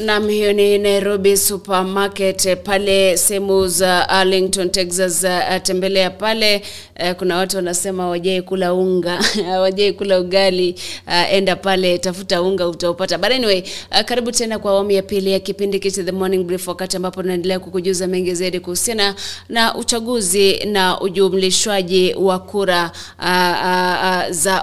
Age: 30-49